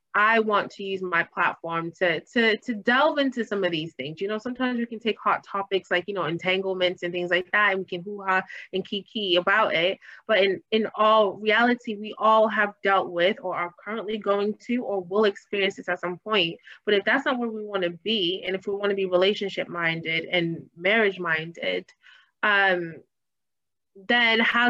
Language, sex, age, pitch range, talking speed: English, female, 20-39, 175-215 Hz, 200 wpm